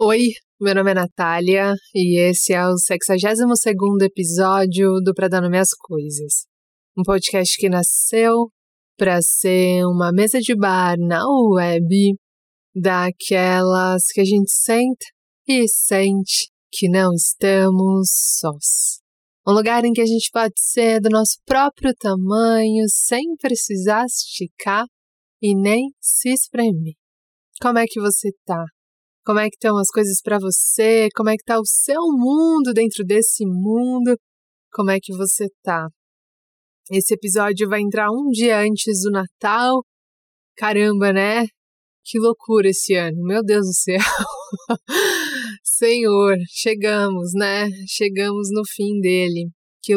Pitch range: 190-225 Hz